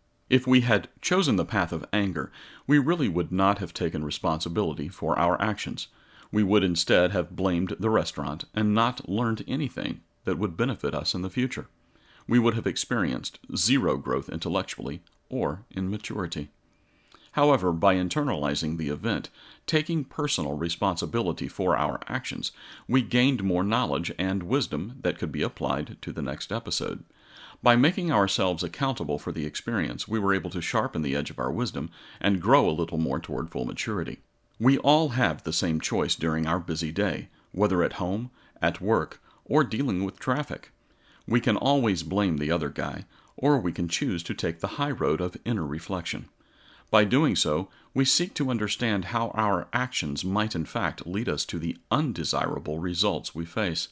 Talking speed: 170 wpm